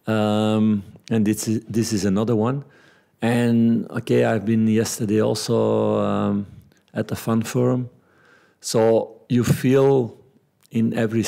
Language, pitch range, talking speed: English, 105-120 Hz, 115 wpm